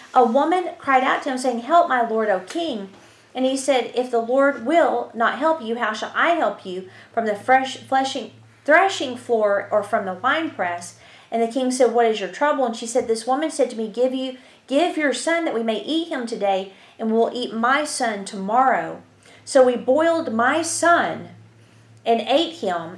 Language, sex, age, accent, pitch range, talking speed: English, female, 40-59, American, 210-270 Hz, 205 wpm